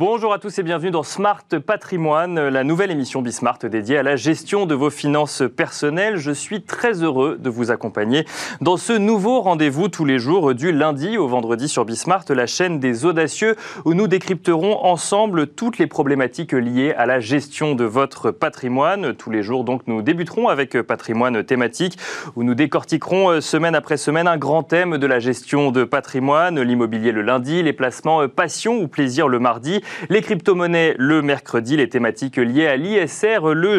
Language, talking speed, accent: French, 180 wpm, French